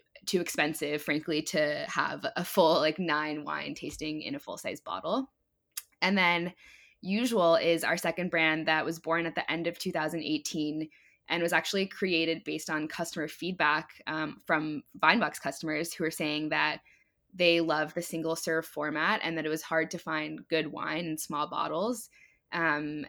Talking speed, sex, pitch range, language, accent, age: 165 wpm, female, 155-175 Hz, English, American, 10-29